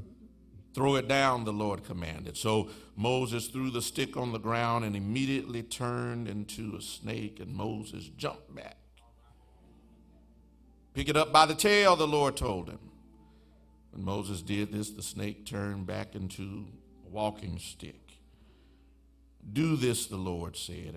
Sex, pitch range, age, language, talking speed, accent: male, 75-105 Hz, 60-79, English, 145 wpm, American